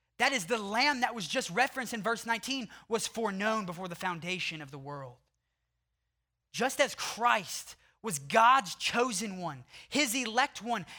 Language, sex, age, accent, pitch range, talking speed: English, male, 20-39, American, 135-205 Hz, 160 wpm